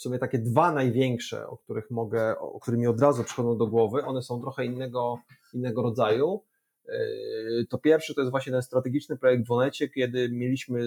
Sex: male